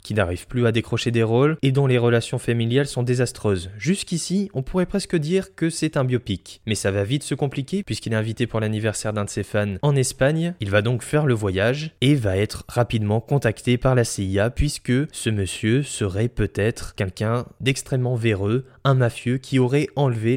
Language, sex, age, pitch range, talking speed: French, male, 20-39, 110-140 Hz, 195 wpm